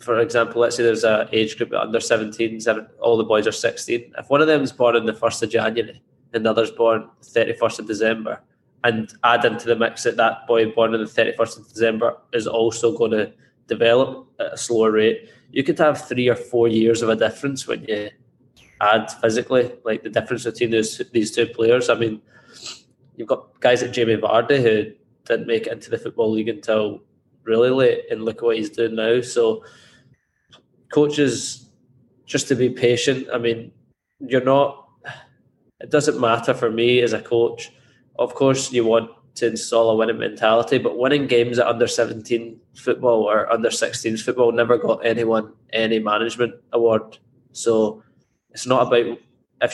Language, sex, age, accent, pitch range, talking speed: English, male, 20-39, British, 115-125 Hz, 185 wpm